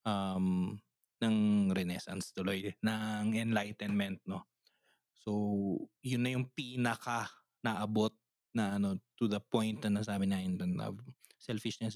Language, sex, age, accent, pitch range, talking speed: Filipino, male, 20-39, native, 105-135 Hz, 110 wpm